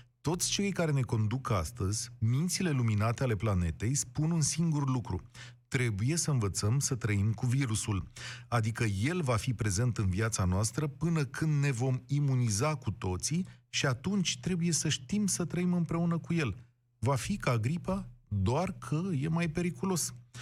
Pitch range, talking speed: 110-150 Hz, 160 wpm